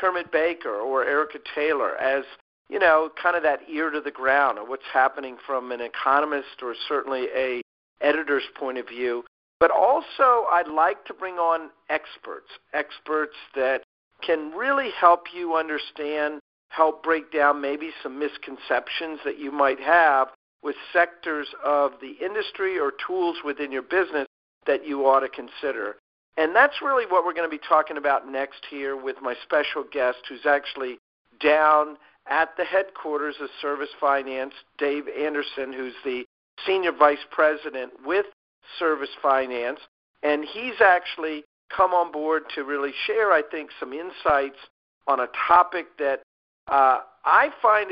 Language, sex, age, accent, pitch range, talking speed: English, male, 50-69, American, 140-170 Hz, 155 wpm